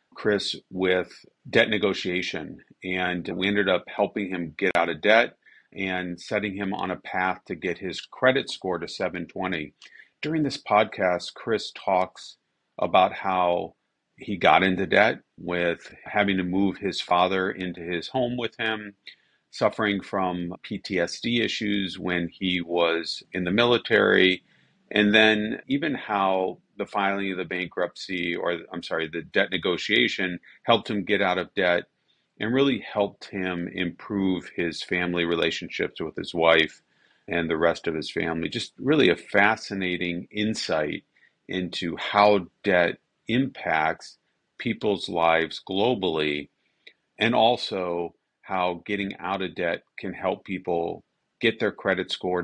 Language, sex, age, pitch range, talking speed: English, male, 40-59, 85-100 Hz, 140 wpm